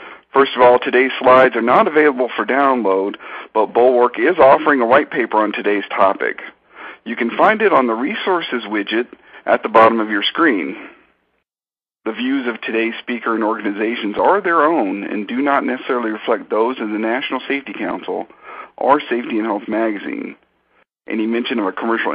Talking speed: 175 wpm